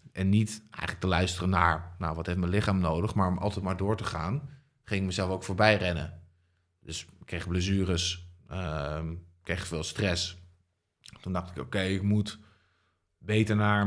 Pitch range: 90-105 Hz